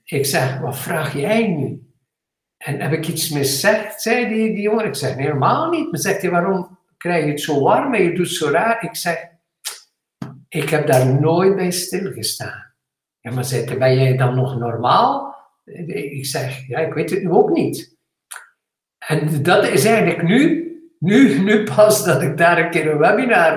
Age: 60-79